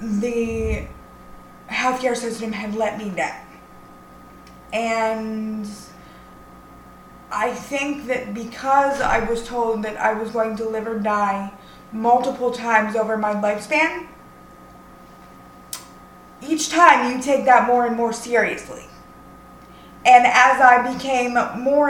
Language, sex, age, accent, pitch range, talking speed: English, female, 20-39, American, 225-265 Hz, 115 wpm